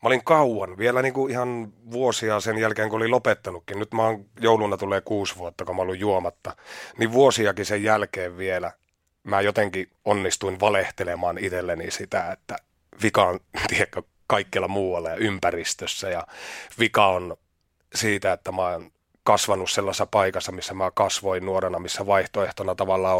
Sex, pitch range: male, 90-110 Hz